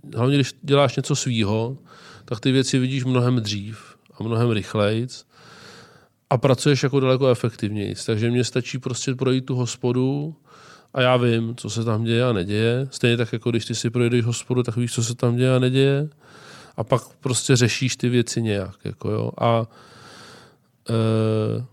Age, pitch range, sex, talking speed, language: 20-39, 115-130 Hz, male, 170 wpm, Czech